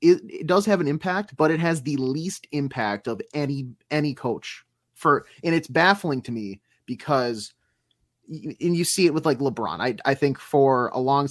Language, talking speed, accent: English, 190 wpm, American